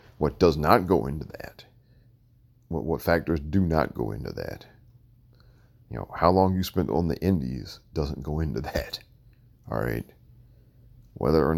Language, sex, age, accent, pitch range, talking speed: English, male, 50-69, American, 75-120 Hz, 160 wpm